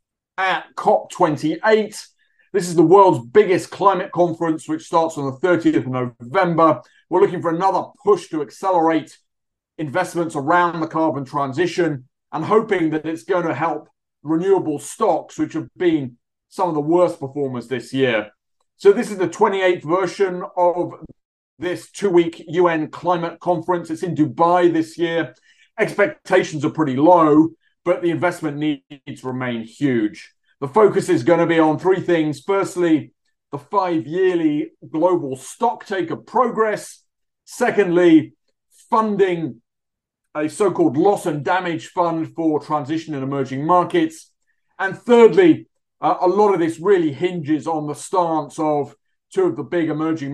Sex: male